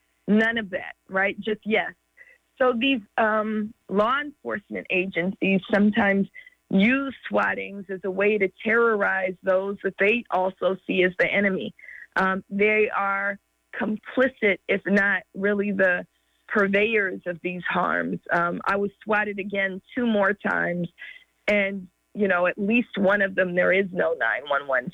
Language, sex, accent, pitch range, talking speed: English, female, American, 185-215 Hz, 145 wpm